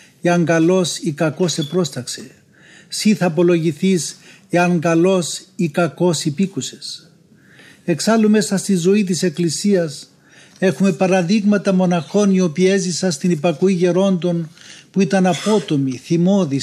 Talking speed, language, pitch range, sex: 110 wpm, Greek, 165-185 Hz, male